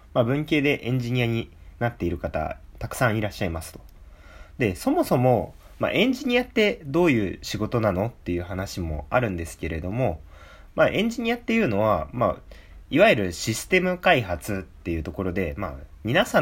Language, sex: Japanese, male